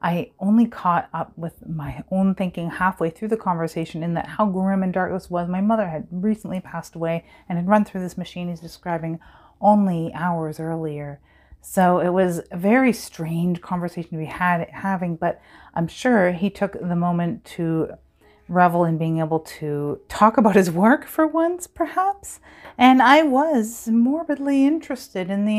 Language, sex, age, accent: English, female, 30-49, American